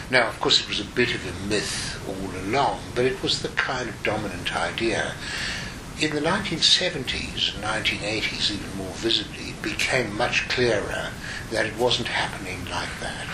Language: English